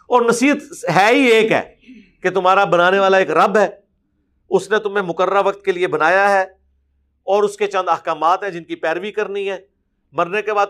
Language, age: Urdu, 50-69